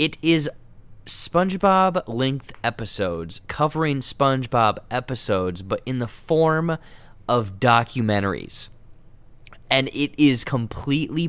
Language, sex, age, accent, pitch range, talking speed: English, male, 20-39, American, 100-125 Hz, 90 wpm